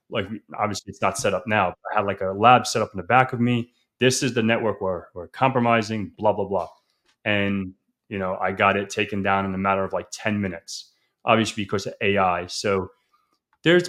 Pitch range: 105-125 Hz